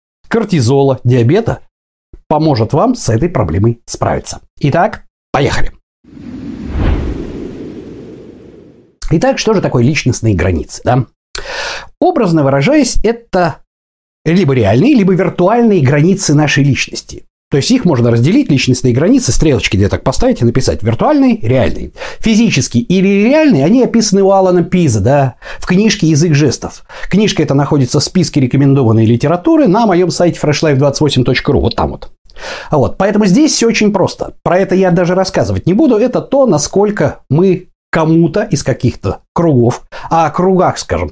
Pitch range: 125-190 Hz